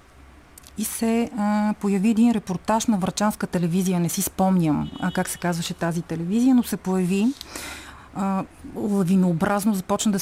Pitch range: 180-215 Hz